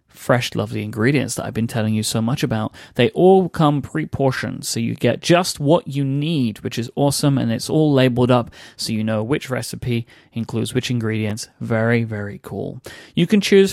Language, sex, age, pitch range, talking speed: English, male, 30-49, 120-160 Hz, 190 wpm